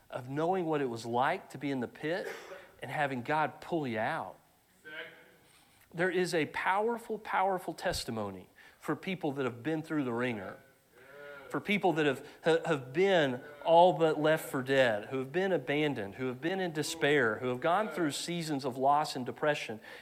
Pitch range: 140-185 Hz